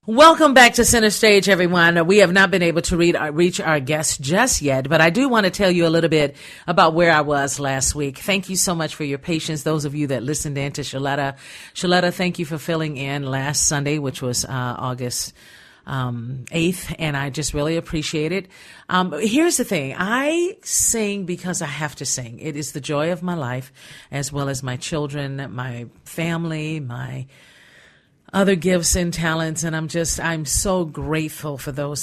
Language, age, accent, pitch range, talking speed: English, 50-69, American, 140-185 Hz, 200 wpm